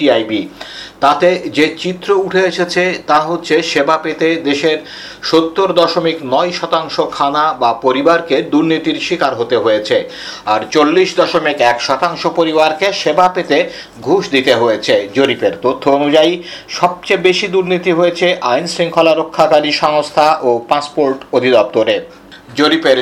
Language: Bengali